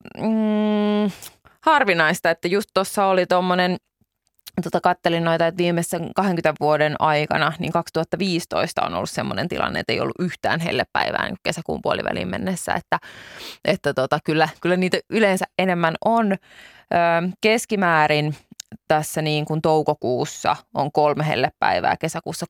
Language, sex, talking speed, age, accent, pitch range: Finnish, female, 125 wpm, 20-39, native, 155-185 Hz